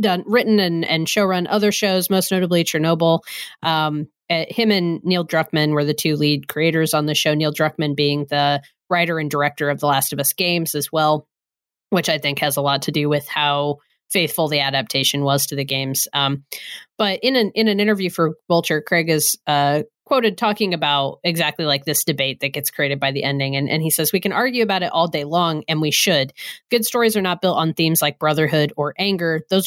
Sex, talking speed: female, 220 wpm